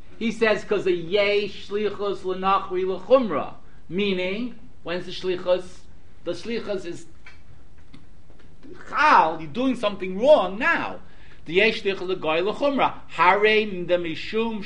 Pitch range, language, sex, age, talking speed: 145-205 Hz, English, male, 60-79, 115 wpm